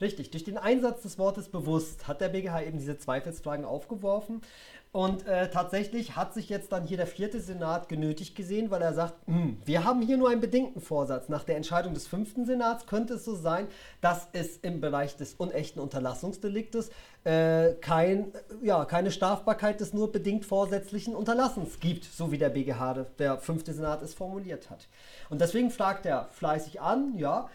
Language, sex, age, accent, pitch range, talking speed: German, male, 40-59, German, 155-210 Hz, 180 wpm